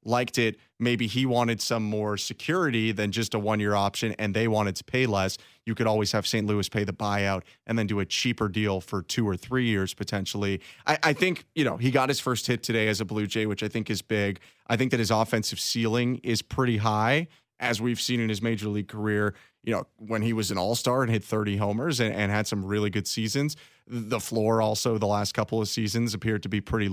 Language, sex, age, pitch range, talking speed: English, male, 30-49, 105-130 Hz, 240 wpm